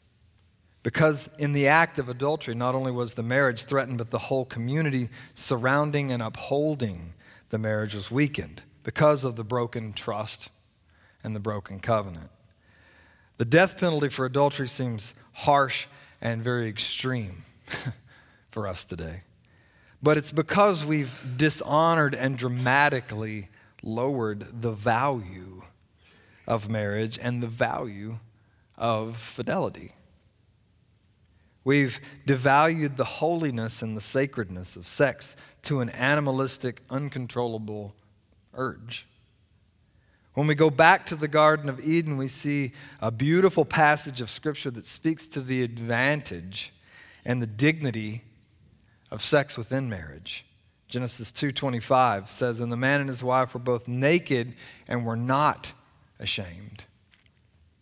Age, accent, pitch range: 40-59, American, 105-140 Hz